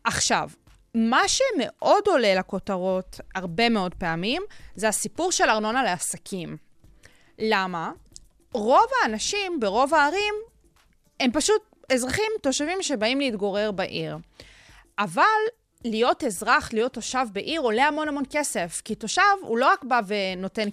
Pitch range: 195-290 Hz